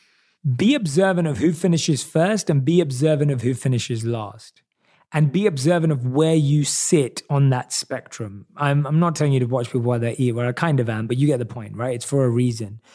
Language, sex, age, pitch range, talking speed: English, male, 30-49, 125-160 Hz, 225 wpm